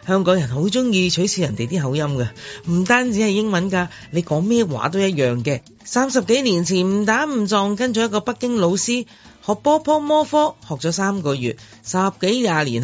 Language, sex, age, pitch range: Chinese, male, 30-49, 155-230 Hz